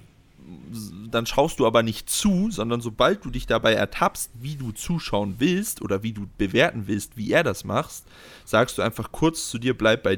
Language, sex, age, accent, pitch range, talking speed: German, male, 30-49, German, 105-130 Hz, 195 wpm